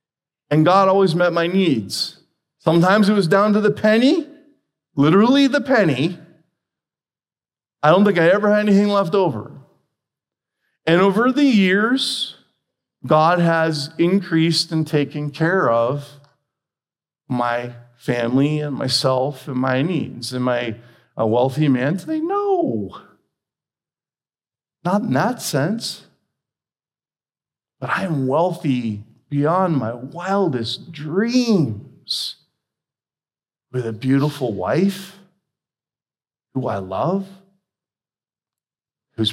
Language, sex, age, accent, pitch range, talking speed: English, male, 40-59, American, 140-200 Hz, 105 wpm